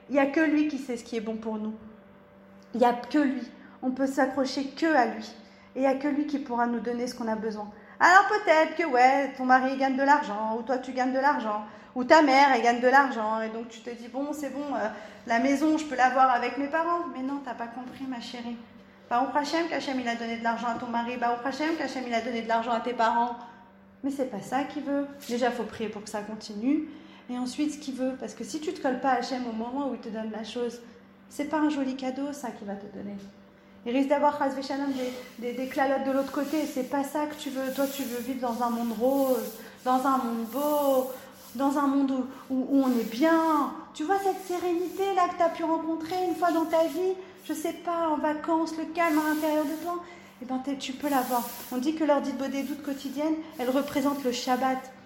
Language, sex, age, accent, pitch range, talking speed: French, female, 30-49, French, 240-290 Hz, 260 wpm